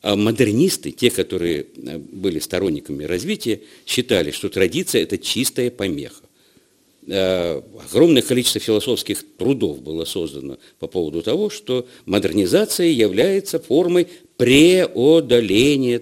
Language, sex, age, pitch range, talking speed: Russian, male, 50-69, 100-140 Hz, 100 wpm